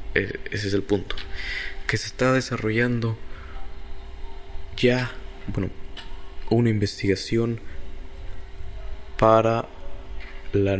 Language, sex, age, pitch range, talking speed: Spanish, male, 20-39, 95-120 Hz, 80 wpm